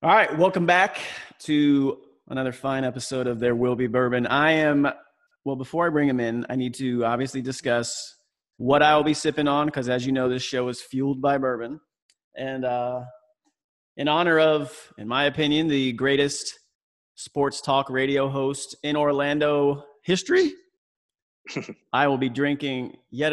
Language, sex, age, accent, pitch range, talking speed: English, male, 30-49, American, 125-150 Hz, 160 wpm